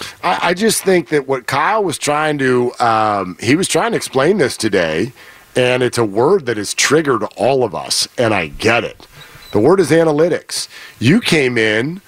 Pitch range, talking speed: 135-190 Hz, 185 wpm